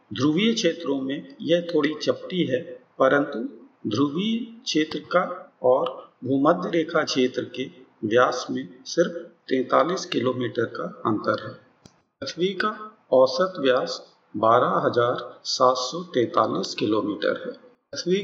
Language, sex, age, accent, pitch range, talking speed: Hindi, male, 50-69, native, 125-180 Hz, 105 wpm